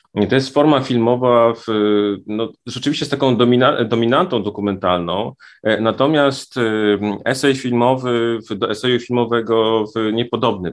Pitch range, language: 100-120 Hz, Polish